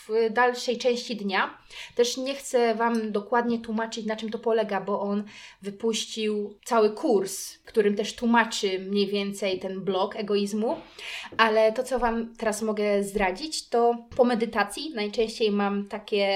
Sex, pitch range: female, 205-255 Hz